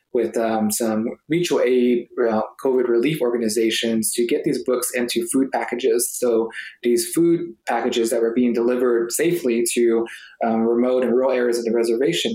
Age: 20-39